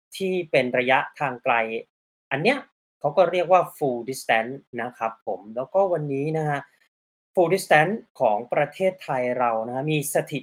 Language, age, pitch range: Thai, 30-49, 130-180 Hz